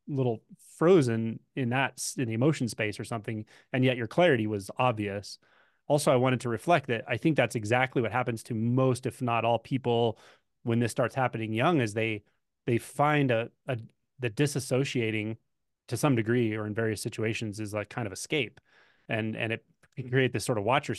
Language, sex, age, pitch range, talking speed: English, male, 30-49, 110-130 Hz, 195 wpm